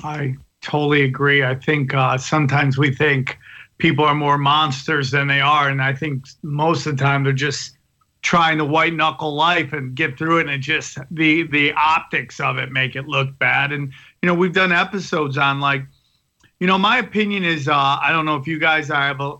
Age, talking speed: 40-59, 205 wpm